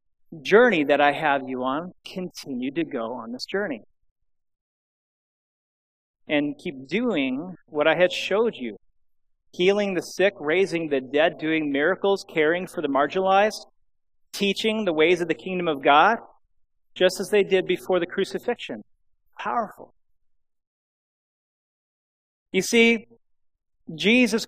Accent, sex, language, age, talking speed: American, male, English, 40-59, 125 wpm